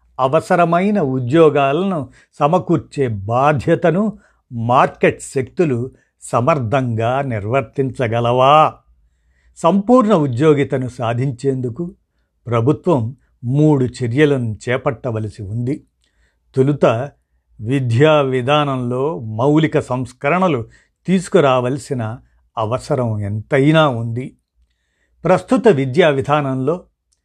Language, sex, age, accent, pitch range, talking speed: Telugu, male, 50-69, native, 120-155 Hz, 60 wpm